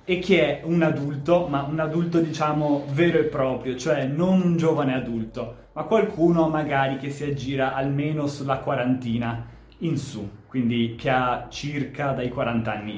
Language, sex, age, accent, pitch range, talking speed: Italian, male, 20-39, native, 125-160 Hz, 160 wpm